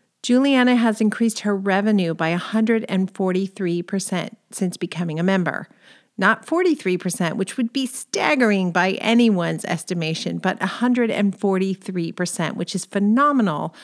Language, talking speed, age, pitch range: English, 110 wpm, 40-59, 175-220 Hz